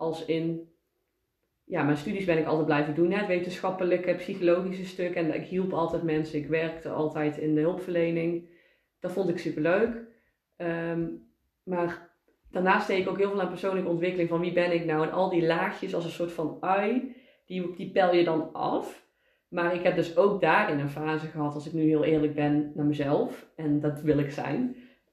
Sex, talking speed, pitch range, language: female, 205 wpm, 155-185 Hz, Dutch